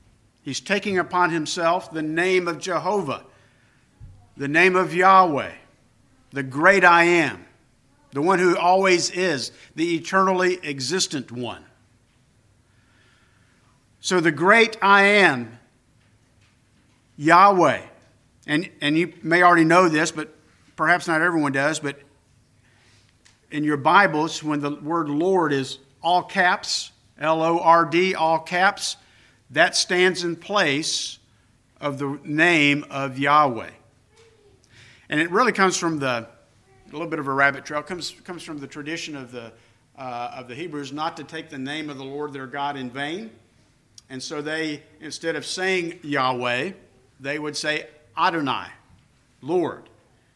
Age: 50-69